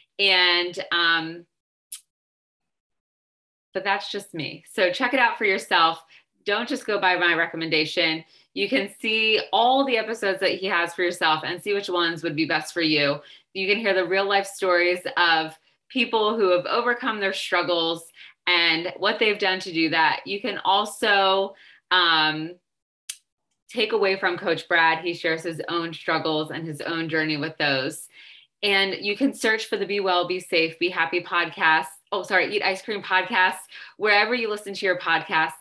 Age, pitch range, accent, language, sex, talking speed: 20-39, 160-190 Hz, American, English, female, 175 wpm